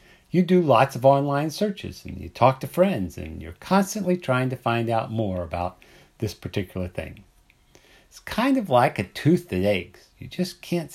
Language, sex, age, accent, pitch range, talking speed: English, male, 50-69, American, 95-140 Hz, 185 wpm